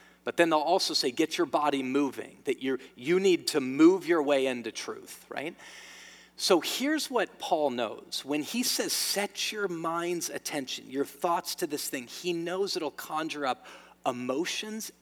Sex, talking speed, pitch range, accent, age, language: male, 170 wpm, 125-195 Hz, American, 40-59, English